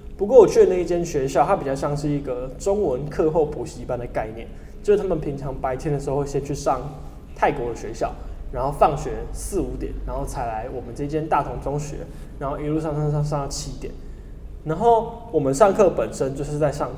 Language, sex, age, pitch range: Chinese, male, 20-39, 135-170 Hz